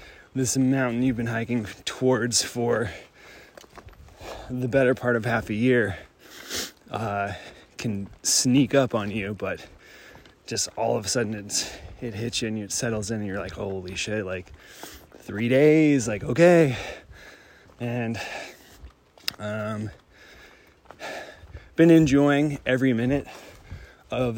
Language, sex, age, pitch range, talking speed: English, male, 20-39, 105-125 Hz, 125 wpm